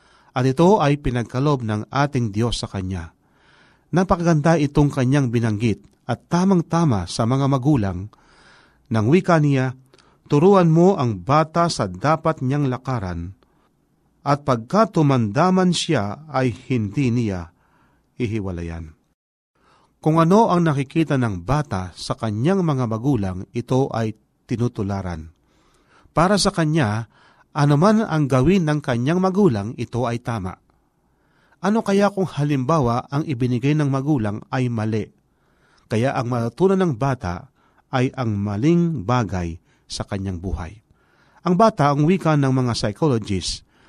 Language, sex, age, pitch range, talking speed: Filipino, male, 40-59, 115-160 Hz, 125 wpm